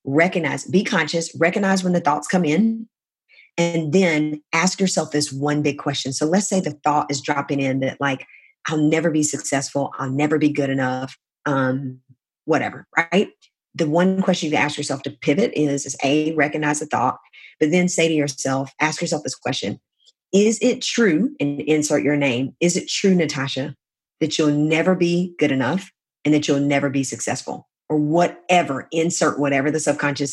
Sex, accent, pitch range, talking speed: female, American, 140-175 Hz, 180 wpm